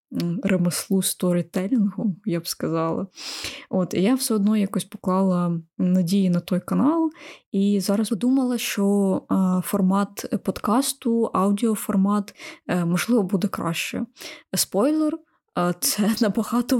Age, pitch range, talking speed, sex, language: 20-39, 185-220 Hz, 100 wpm, female, Ukrainian